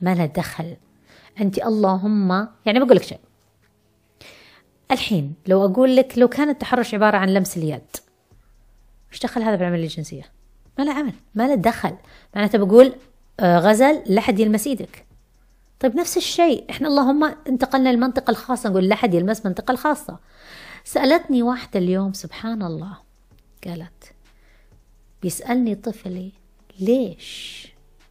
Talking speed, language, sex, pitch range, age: 125 wpm, Arabic, female, 180-250 Hz, 30-49